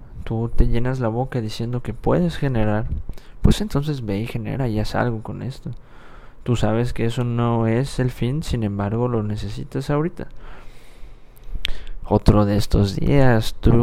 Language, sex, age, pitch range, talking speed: Spanish, male, 20-39, 105-120 Hz, 160 wpm